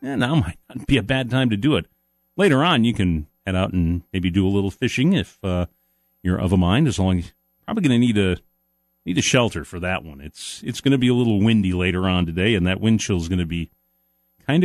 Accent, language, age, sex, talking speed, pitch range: American, English, 40-59, male, 260 wpm, 95-135 Hz